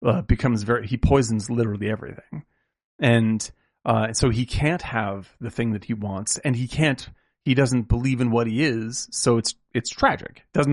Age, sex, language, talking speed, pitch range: 30-49, male, English, 185 wpm, 110-145 Hz